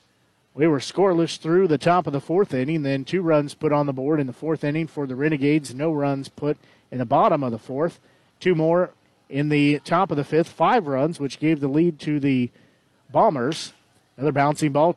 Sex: male